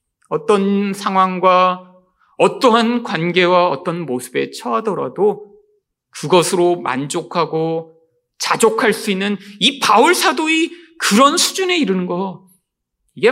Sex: male